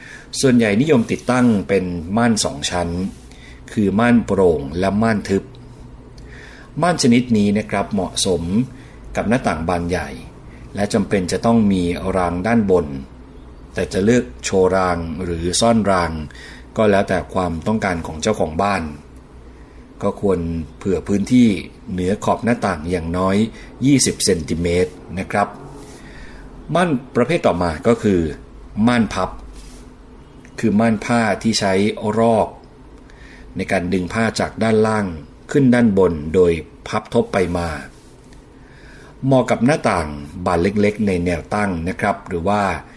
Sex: male